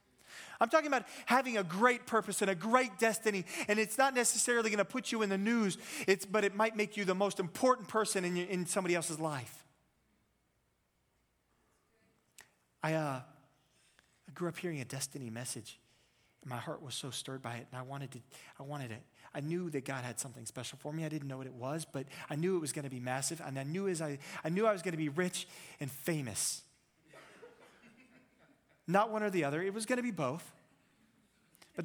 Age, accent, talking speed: 30-49, American, 210 wpm